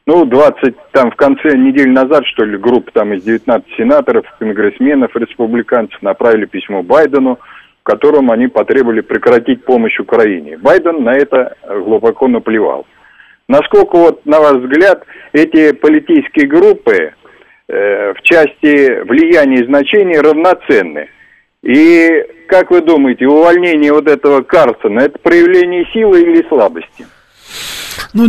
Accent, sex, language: native, male, Russian